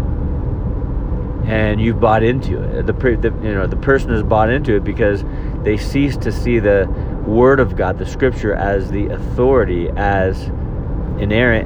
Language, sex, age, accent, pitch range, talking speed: English, male, 30-49, American, 95-115 Hz, 160 wpm